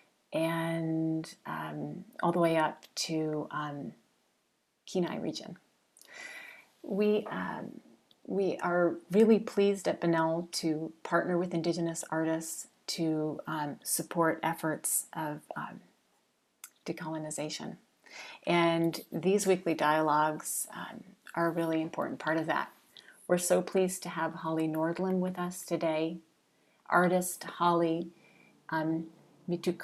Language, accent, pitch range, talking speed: English, American, 160-175 Hz, 110 wpm